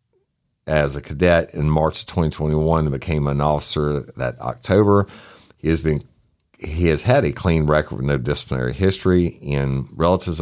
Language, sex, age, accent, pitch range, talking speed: English, male, 50-69, American, 75-95 Hz, 160 wpm